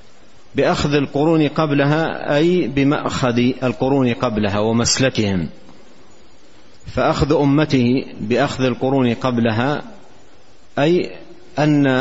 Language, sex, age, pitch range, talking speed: Arabic, male, 50-69, 120-150 Hz, 75 wpm